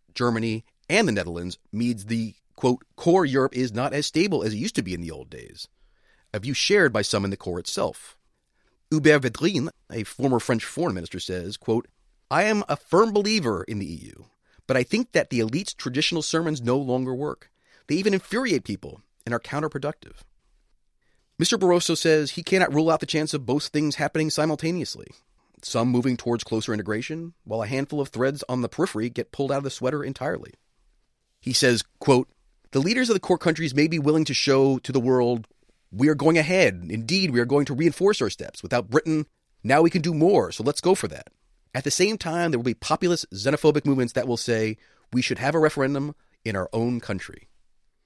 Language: English